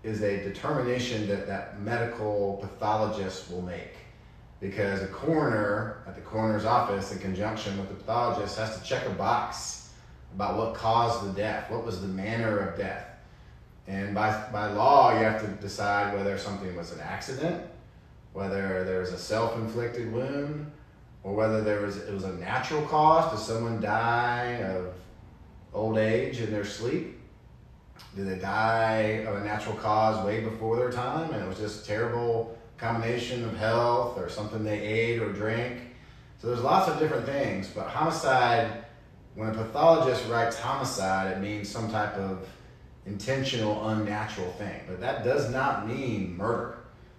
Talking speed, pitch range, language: 160 wpm, 100-115 Hz, English